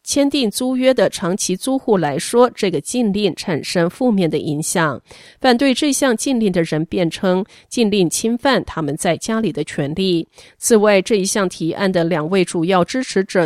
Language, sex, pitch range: Chinese, female, 170-225 Hz